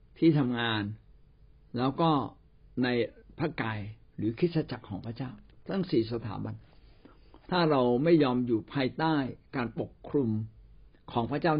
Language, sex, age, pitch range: Thai, male, 60-79, 115-150 Hz